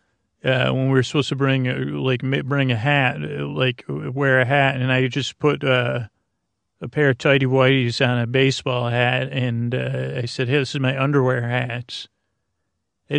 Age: 40-59